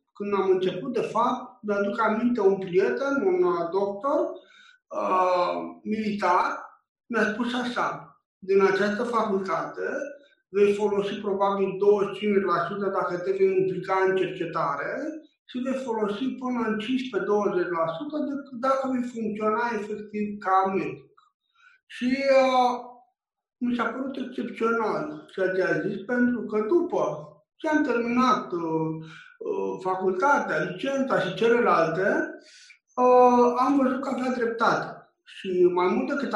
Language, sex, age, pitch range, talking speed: Romanian, male, 60-79, 190-255 Hz, 115 wpm